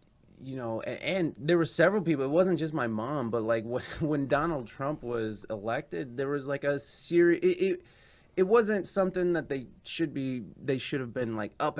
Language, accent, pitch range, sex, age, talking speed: English, American, 115-165 Hz, male, 20-39, 205 wpm